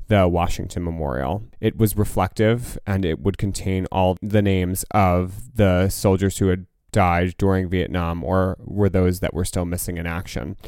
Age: 20-39